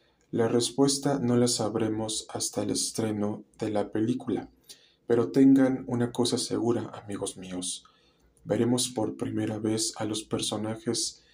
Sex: male